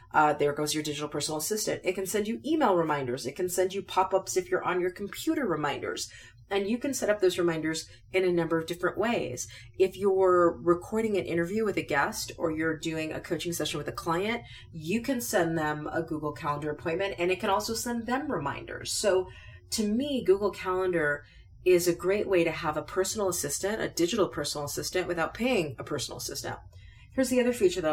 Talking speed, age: 210 wpm, 30-49